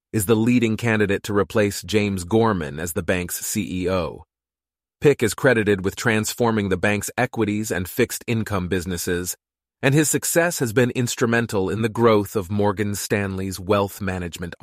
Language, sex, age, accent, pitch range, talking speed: English, male, 30-49, American, 95-120 Hz, 150 wpm